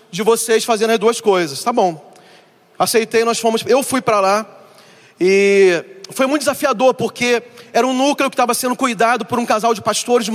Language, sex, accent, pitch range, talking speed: Portuguese, male, Brazilian, 210-250 Hz, 185 wpm